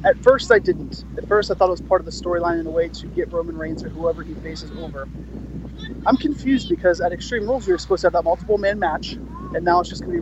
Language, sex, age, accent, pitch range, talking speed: English, male, 20-39, American, 165-210 Hz, 275 wpm